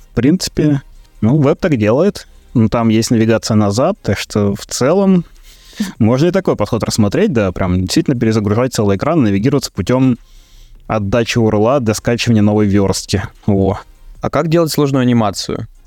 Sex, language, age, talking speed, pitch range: male, Russian, 20-39, 150 wpm, 105-130 Hz